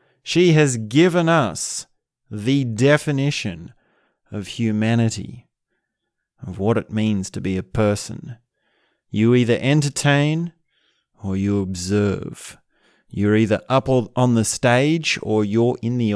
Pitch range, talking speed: 100-135 Hz, 120 wpm